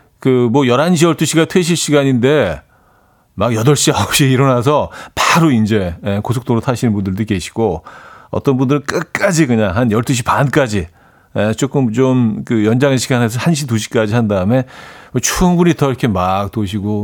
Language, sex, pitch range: Korean, male, 105-145 Hz